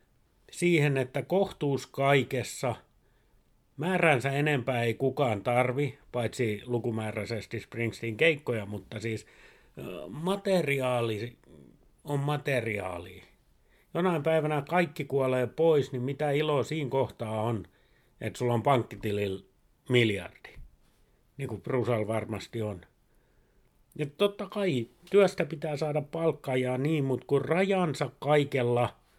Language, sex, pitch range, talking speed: Finnish, male, 115-150 Hz, 105 wpm